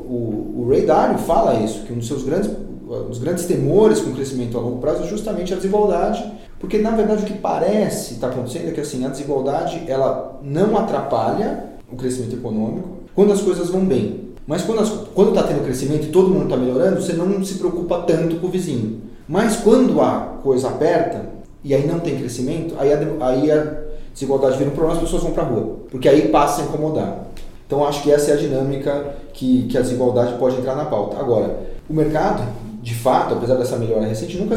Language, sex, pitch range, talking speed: Portuguese, male, 125-185 Hz, 215 wpm